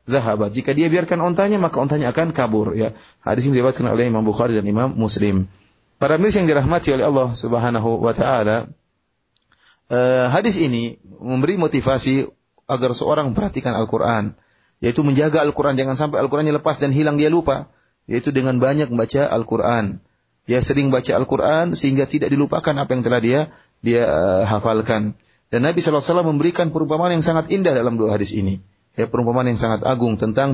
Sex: male